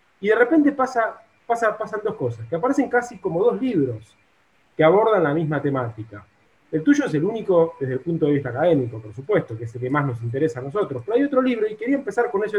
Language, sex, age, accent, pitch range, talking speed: Spanish, male, 30-49, Argentinian, 150-225 Hz, 230 wpm